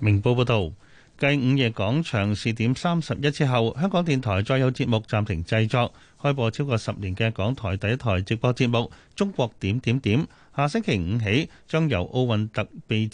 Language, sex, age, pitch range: Chinese, male, 30-49, 110-140 Hz